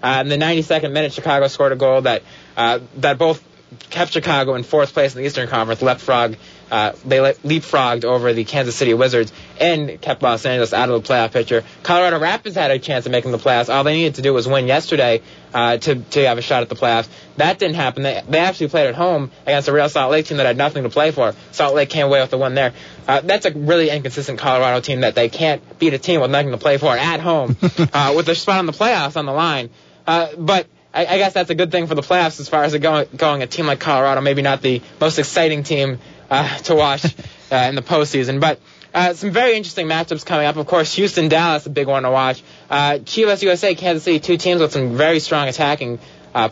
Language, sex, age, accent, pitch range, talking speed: English, male, 20-39, American, 130-165 Hz, 245 wpm